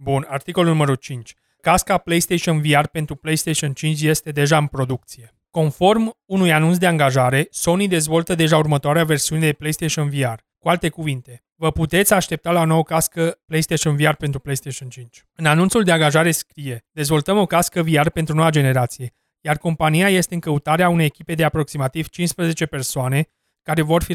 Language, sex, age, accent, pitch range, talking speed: Romanian, male, 30-49, native, 145-170 Hz, 165 wpm